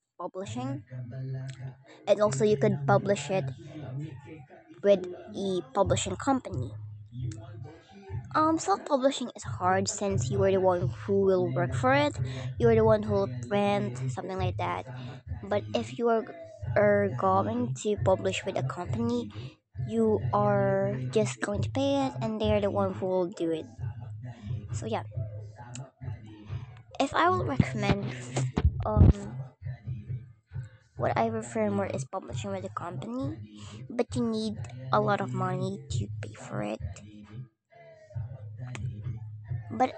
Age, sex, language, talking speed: 10-29, male, Filipino, 135 wpm